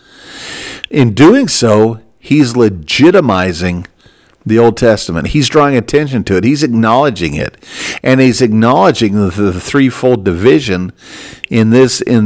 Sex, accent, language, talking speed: male, American, English, 120 wpm